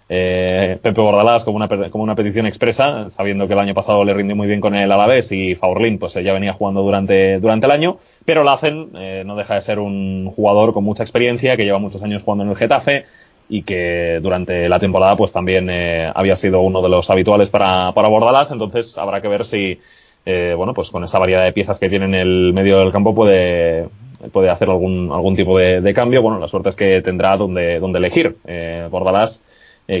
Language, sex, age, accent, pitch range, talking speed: Spanish, male, 20-39, Spanish, 95-105 Hz, 220 wpm